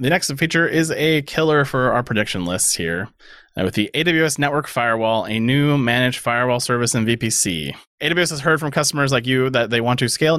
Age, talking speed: 30-49, 210 wpm